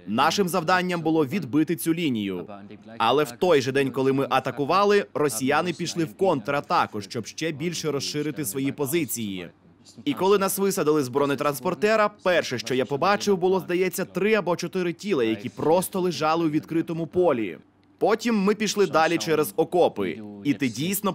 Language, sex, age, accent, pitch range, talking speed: Russian, male, 20-39, native, 130-175 Hz, 155 wpm